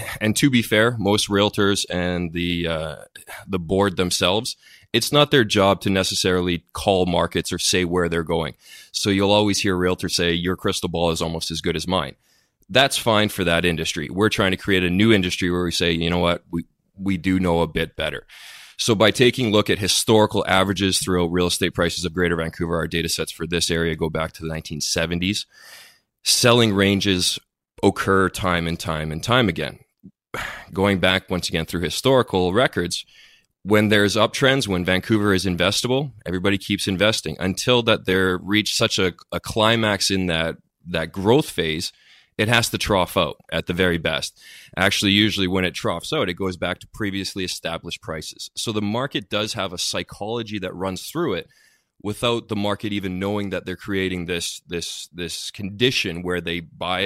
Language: English